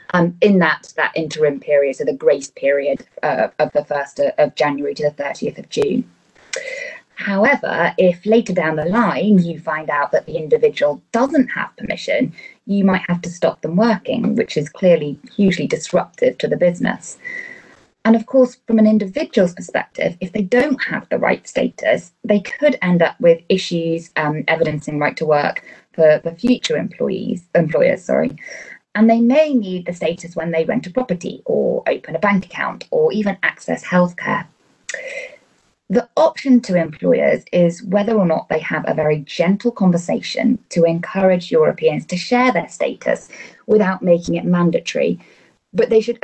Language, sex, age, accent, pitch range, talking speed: English, female, 20-39, British, 165-245 Hz, 170 wpm